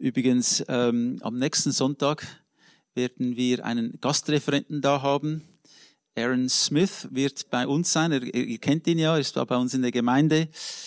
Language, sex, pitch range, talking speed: English, male, 130-160 Hz, 165 wpm